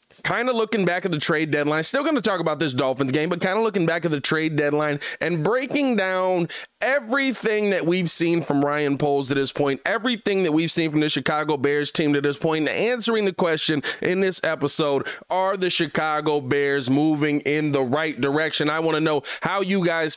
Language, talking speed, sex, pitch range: English, 215 wpm, male, 155-190 Hz